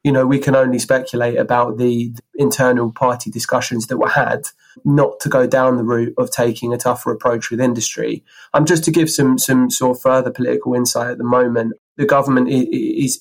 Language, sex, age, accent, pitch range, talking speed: English, male, 20-39, British, 120-130 Hz, 210 wpm